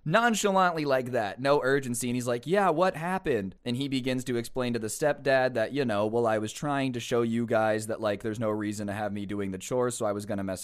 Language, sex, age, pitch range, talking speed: English, male, 20-39, 110-145 Hz, 260 wpm